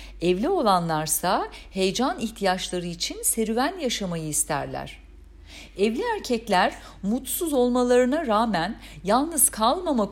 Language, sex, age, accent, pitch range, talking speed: Turkish, female, 50-69, native, 175-265 Hz, 90 wpm